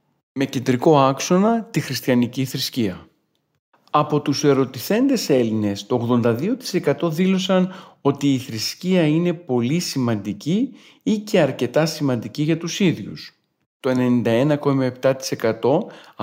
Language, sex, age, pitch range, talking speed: Greek, male, 40-59, 125-180 Hz, 105 wpm